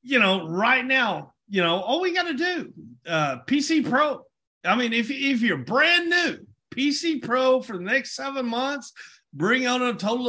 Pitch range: 185-270 Hz